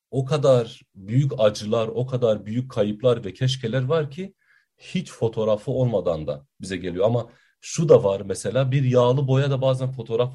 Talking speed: 170 wpm